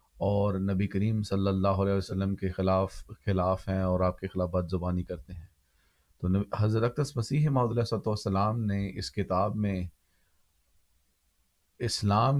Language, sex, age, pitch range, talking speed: Urdu, male, 40-59, 95-110 Hz, 145 wpm